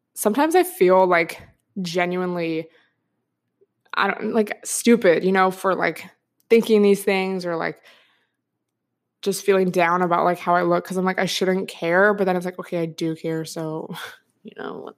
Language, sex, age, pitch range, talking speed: English, female, 20-39, 180-225 Hz, 175 wpm